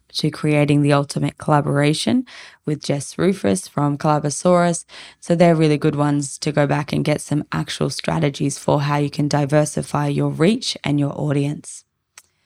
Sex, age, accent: female, 20-39, Australian